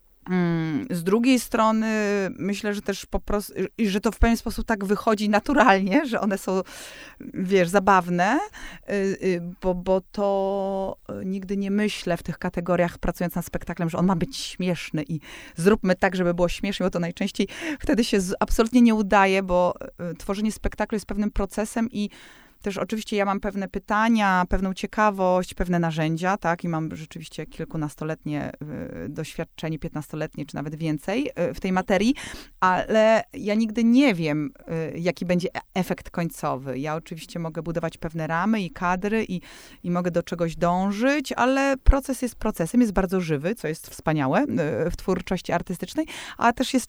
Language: Polish